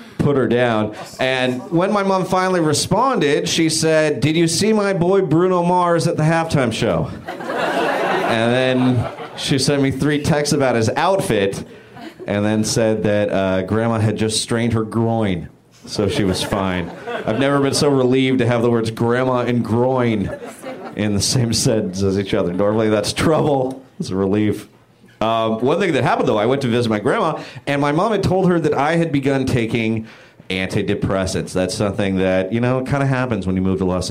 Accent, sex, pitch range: American, male, 105-145 Hz